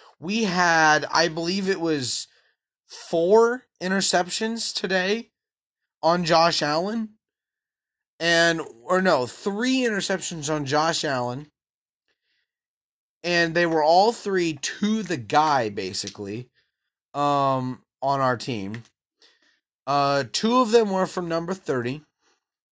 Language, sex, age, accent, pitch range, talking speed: English, male, 30-49, American, 135-180 Hz, 110 wpm